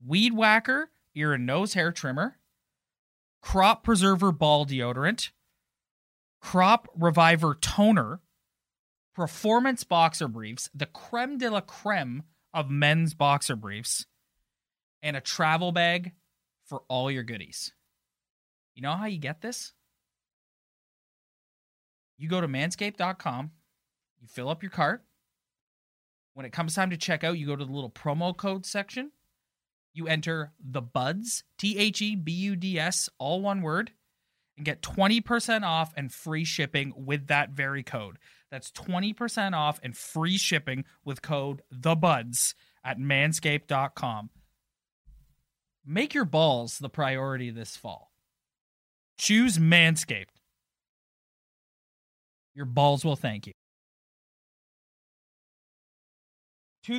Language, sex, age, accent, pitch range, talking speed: English, male, 20-39, American, 135-185 Hz, 115 wpm